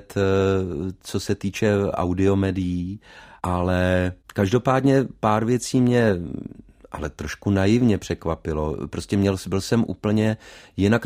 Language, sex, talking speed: Czech, male, 105 wpm